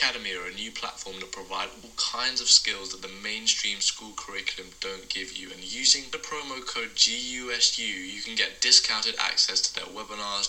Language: English